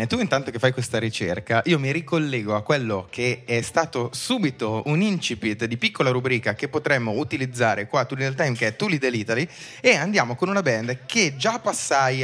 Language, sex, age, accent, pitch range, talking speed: Italian, male, 20-39, native, 120-165 Hz, 195 wpm